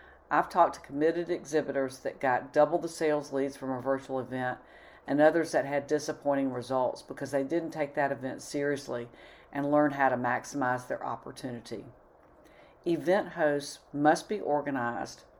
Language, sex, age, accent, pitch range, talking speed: English, female, 50-69, American, 130-160 Hz, 155 wpm